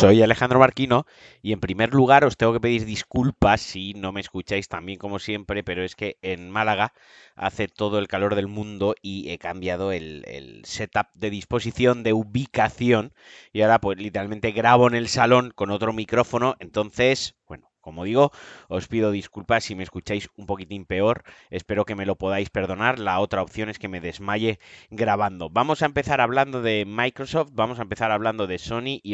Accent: Spanish